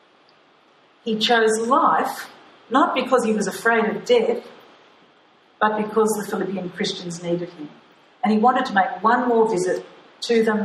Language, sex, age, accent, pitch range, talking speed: English, female, 50-69, Australian, 220-275 Hz, 150 wpm